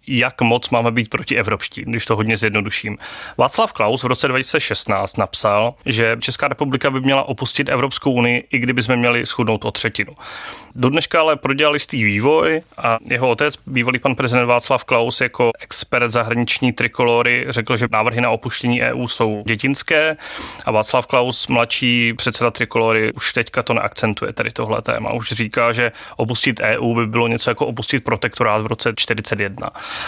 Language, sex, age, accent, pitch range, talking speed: Czech, male, 30-49, native, 115-135 Hz, 165 wpm